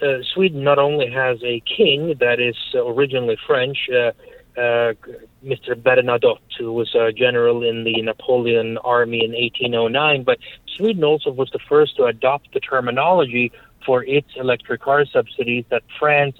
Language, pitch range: English, 120-175 Hz